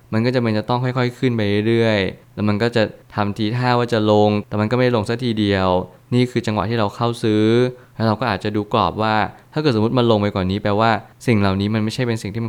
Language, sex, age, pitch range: Thai, male, 20-39, 100-120 Hz